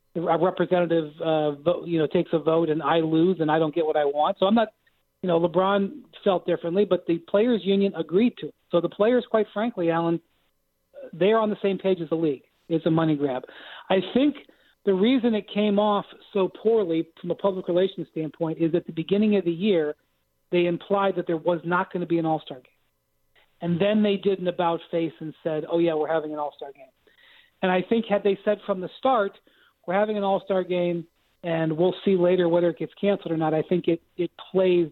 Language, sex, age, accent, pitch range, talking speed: English, male, 40-59, American, 165-200 Hz, 220 wpm